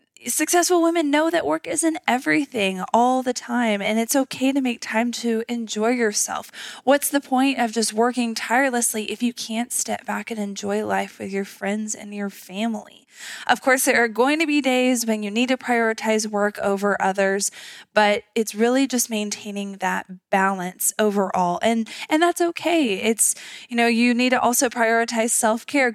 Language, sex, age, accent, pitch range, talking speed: English, female, 20-39, American, 210-255 Hz, 180 wpm